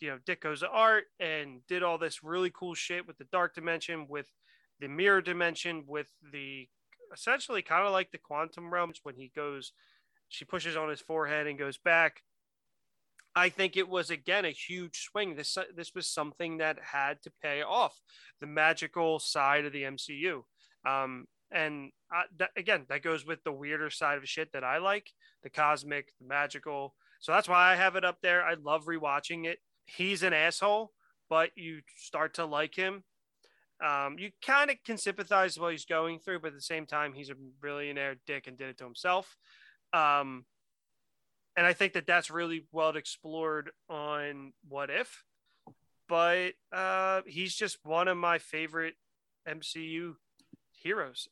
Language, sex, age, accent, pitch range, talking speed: English, male, 30-49, American, 145-175 Hz, 180 wpm